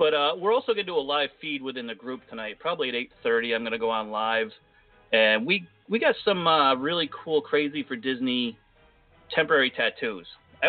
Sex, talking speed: male, 210 wpm